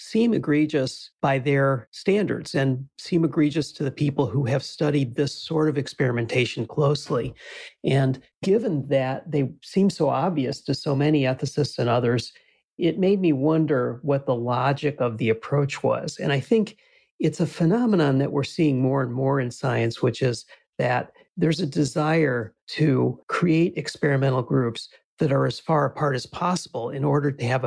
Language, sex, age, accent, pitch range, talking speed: English, male, 40-59, American, 130-155 Hz, 170 wpm